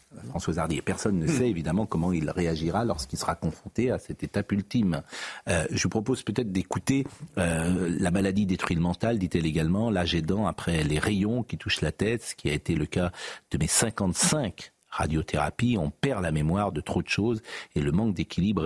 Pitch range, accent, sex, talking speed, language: 90-120 Hz, French, male, 200 wpm, French